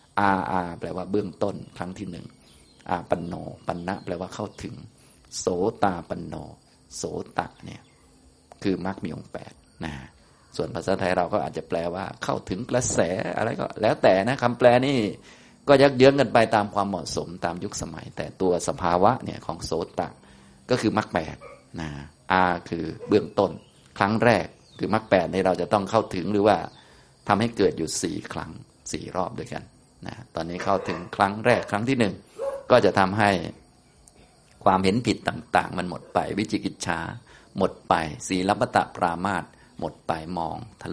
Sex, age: male, 20-39